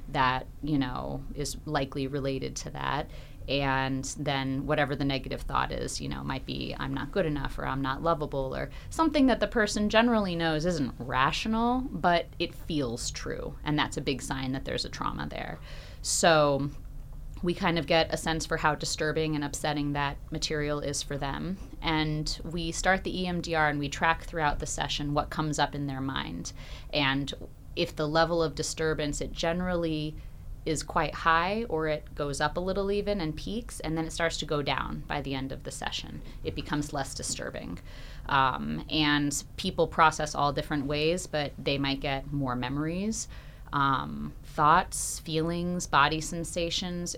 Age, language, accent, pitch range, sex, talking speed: 30-49, English, American, 140-165 Hz, female, 175 wpm